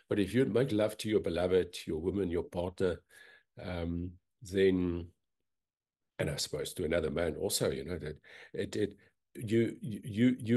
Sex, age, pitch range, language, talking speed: male, 50-69, 90-115 Hz, English, 155 wpm